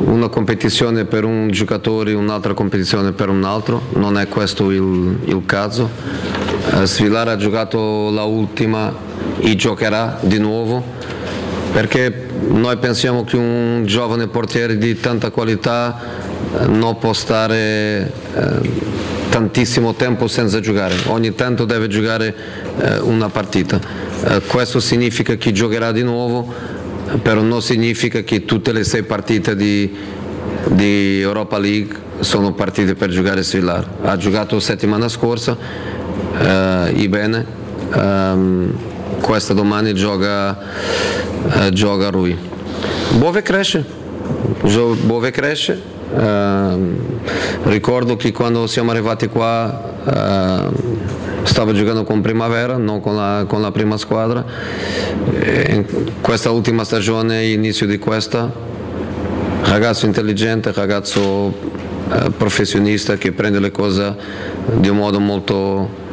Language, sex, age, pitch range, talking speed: Italian, male, 40-59, 100-115 Hz, 120 wpm